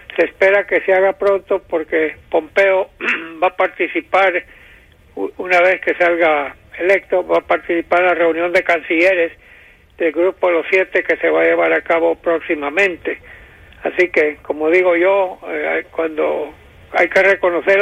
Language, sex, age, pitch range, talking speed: English, male, 60-79, 165-190 Hz, 150 wpm